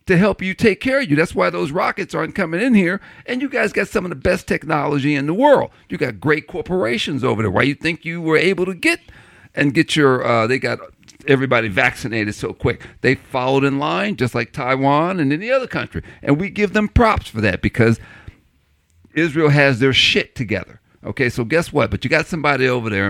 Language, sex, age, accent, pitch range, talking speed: English, male, 50-69, American, 120-165 Hz, 225 wpm